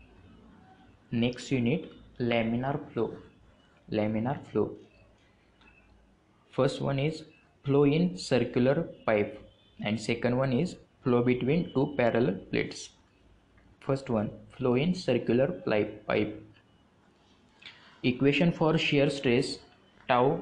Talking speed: 95 wpm